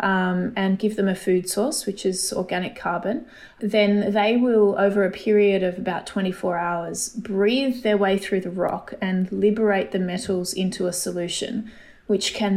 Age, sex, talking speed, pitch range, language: 20-39, female, 170 wpm, 190-220 Hz, English